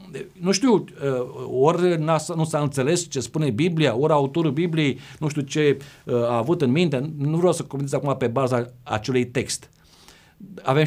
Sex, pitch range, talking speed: male, 125-170 Hz, 160 wpm